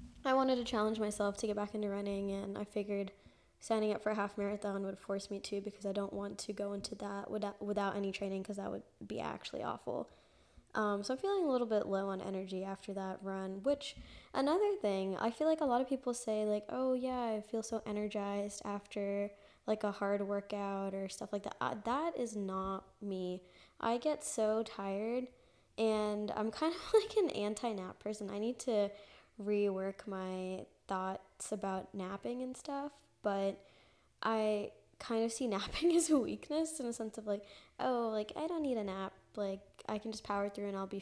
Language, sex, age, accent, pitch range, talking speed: English, female, 10-29, American, 195-225 Hz, 200 wpm